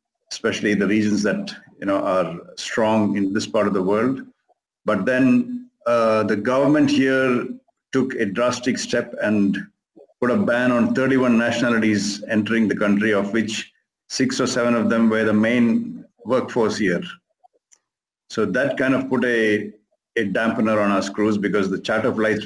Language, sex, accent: English, male, Indian